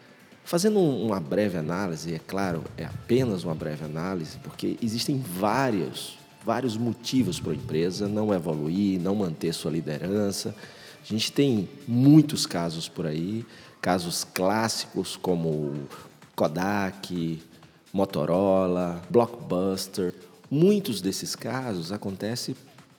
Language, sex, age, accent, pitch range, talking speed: Portuguese, male, 40-59, Brazilian, 85-115 Hz, 110 wpm